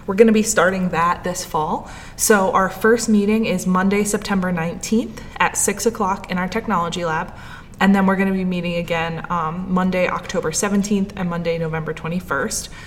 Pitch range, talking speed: 175-215 Hz, 175 wpm